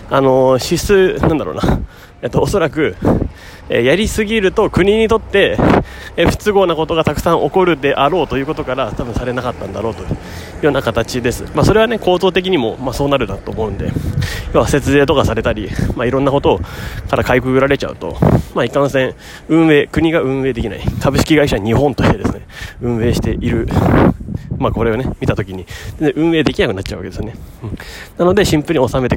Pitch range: 105-150 Hz